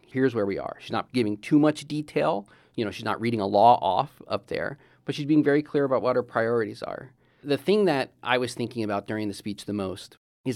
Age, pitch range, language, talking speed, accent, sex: 40-59, 110-140 Hz, English, 245 wpm, American, male